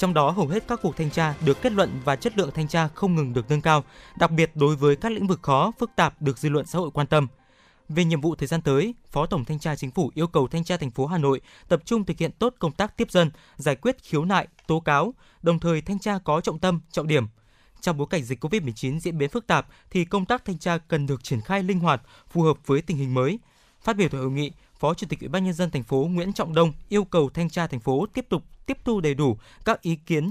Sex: male